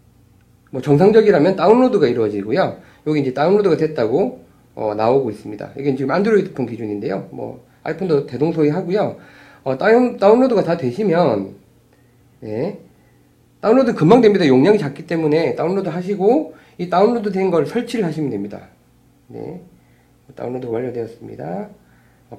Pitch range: 130-210 Hz